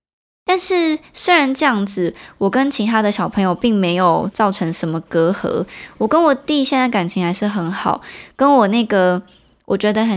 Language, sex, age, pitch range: Chinese, male, 20-39, 190-245 Hz